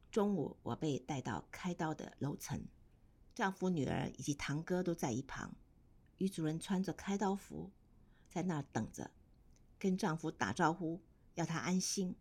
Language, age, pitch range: Chinese, 50-69, 150-195 Hz